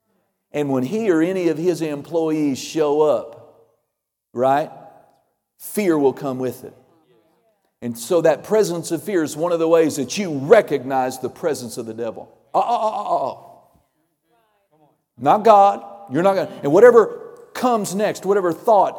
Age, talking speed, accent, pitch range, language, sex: 40-59, 160 wpm, American, 140-190 Hz, English, male